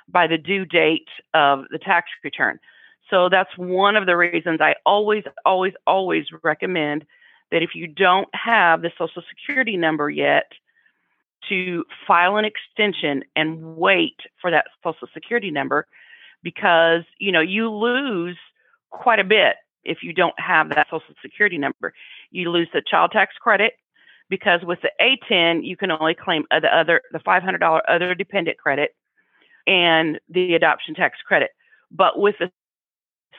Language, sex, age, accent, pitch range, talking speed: English, female, 40-59, American, 165-200 Hz, 155 wpm